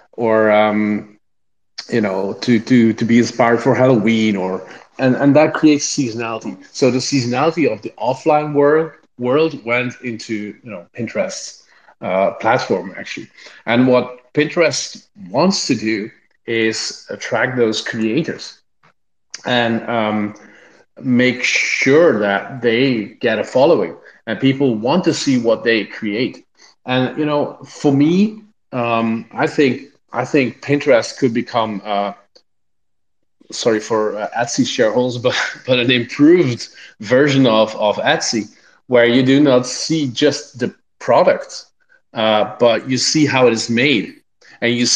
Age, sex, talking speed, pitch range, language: 40-59, male, 140 wpm, 115-145 Hz, English